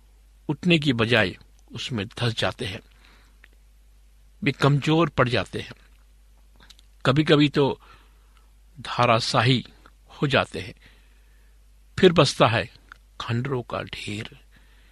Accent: native